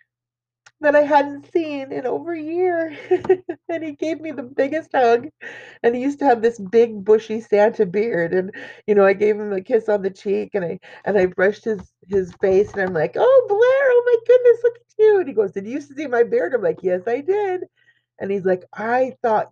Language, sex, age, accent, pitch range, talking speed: English, female, 30-49, American, 205-295 Hz, 225 wpm